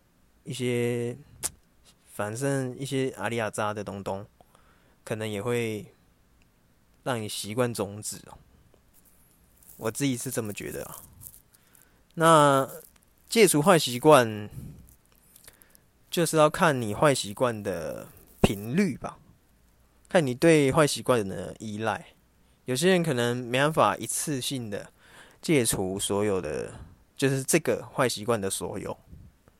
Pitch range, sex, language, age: 95-135 Hz, male, English, 20-39